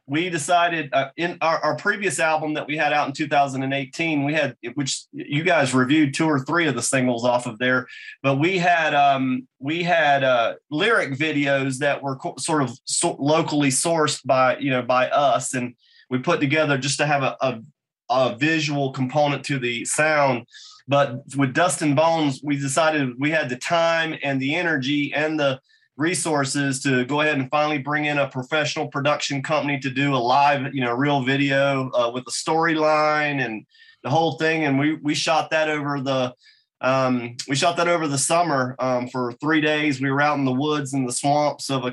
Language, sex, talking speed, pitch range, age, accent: English, male, 195 wpm, 135-155 Hz, 30-49, American